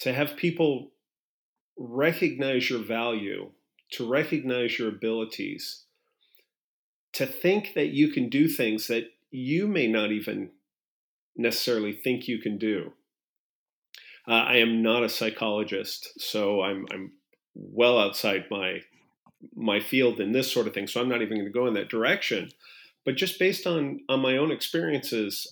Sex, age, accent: male, 40-59, American